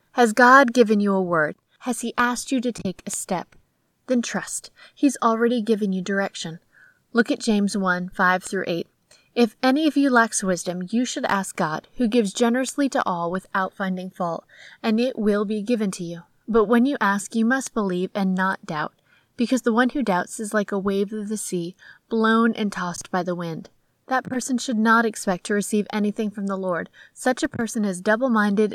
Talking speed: 200 wpm